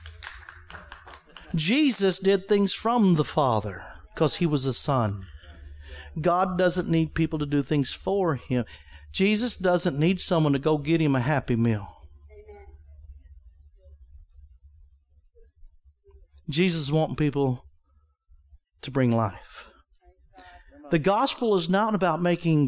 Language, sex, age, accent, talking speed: English, male, 50-69, American, 115 wpm